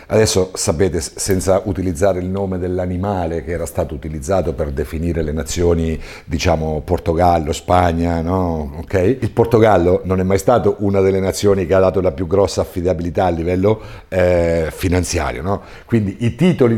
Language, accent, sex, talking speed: Italian, native, male, 155 wpm